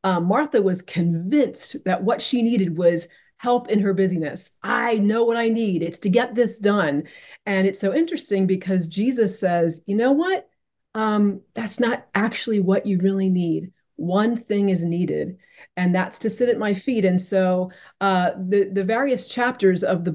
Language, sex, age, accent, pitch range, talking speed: English, female, 30-49, American, 180-225 Hz, 180 wpm